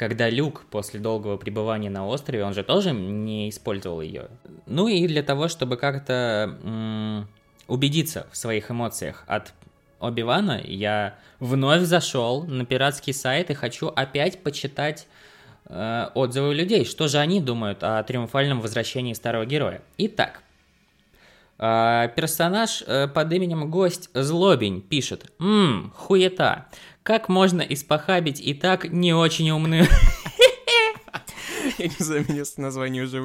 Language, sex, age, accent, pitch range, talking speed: Russian, male, 20-39, native, 115-170 Hz, 120 wpm